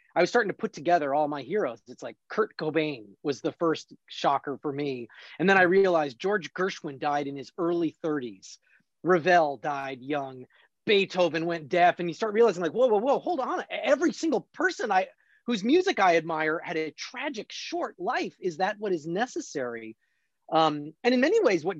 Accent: American